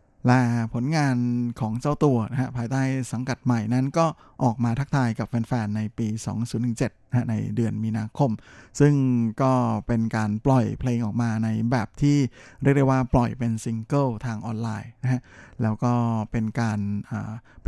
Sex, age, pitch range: male, 20-39, 110-130 Hz